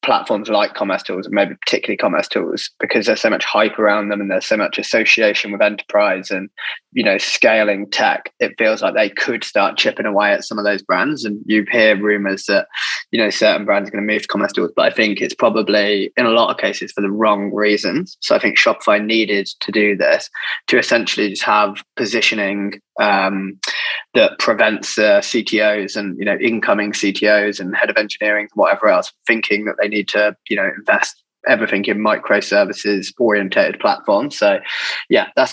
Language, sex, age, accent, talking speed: English, male, 20-39, British, 195 wpm